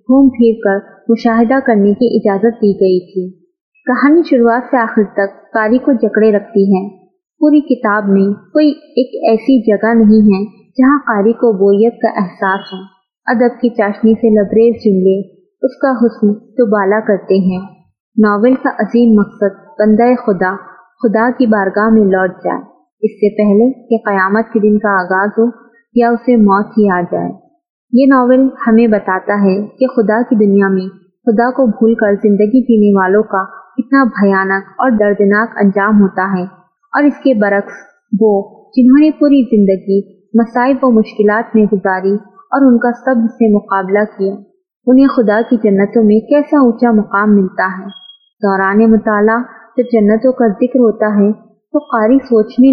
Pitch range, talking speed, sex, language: 200-245 Hz, 165 wpm, female, Urdu